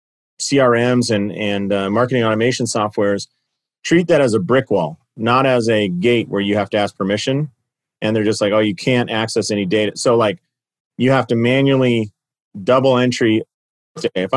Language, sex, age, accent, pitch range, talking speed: English, male, 40-59, American, 110-130 Hz, 175 wpm